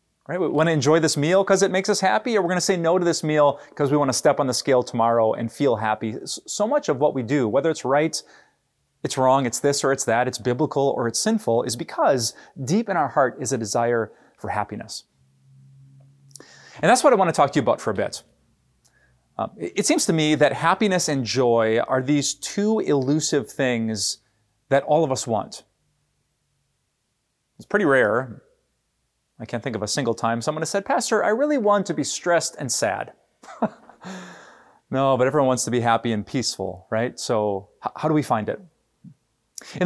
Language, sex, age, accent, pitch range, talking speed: English, male, 30-49, American, 120-155 Hz, 205 wpm